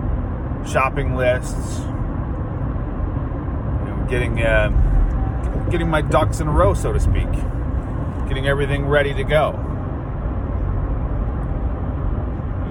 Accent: American